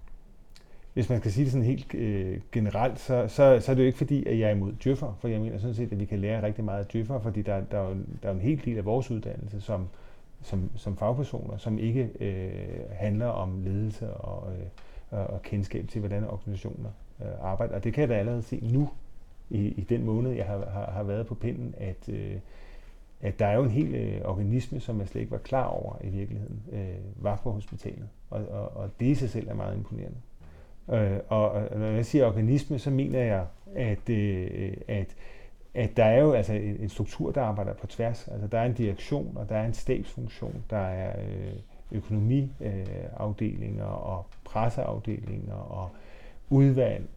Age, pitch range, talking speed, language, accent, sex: 30-49, 100-125 Hz, 190 wpm, Danish, native, male